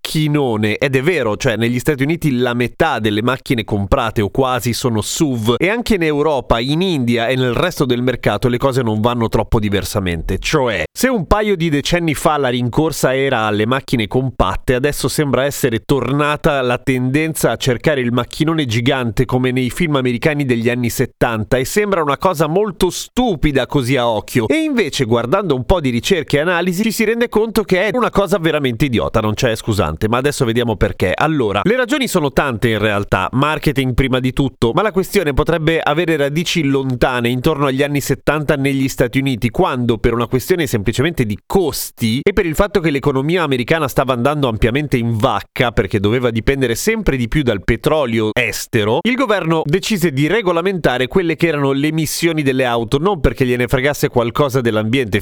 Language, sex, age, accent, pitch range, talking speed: Italian, male, 30-49, native, 120-160 Hz, 185 wpm